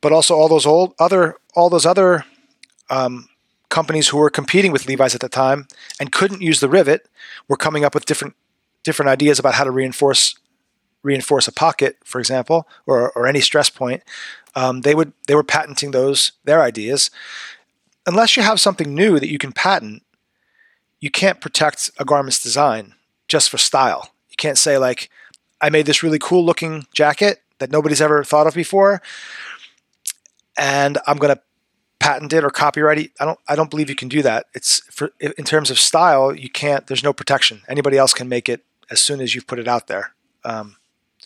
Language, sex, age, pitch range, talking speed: English, male, 30-49, 140-165 Hz, 190 wpm